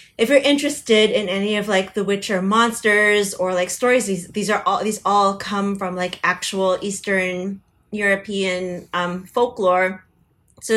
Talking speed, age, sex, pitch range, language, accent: 155 wpm, 20-39, female, 185-220 Hz, English, American